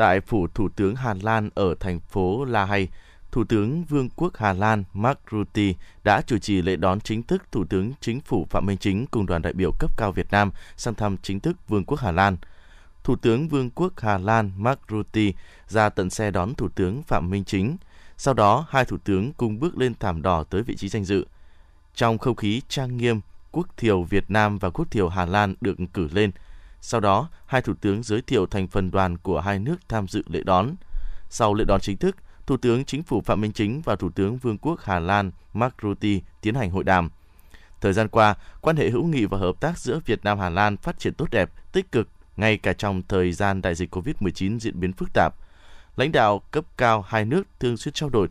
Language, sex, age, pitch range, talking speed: Vietnamese, male, 20-39, 95-115 Hz, 225 wpm